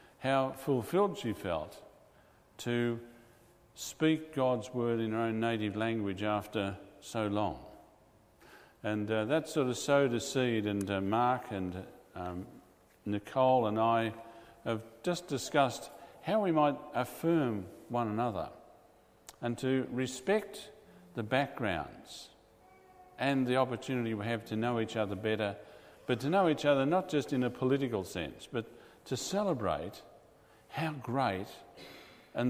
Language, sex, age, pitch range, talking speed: English, male, 50-69, 100-135 Hz, 135 wpm